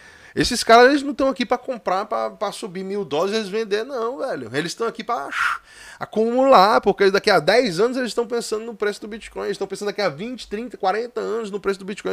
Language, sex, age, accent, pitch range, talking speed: Portuguese, male, 20-39, Brazilian, 130-215 Hz, 230 wpm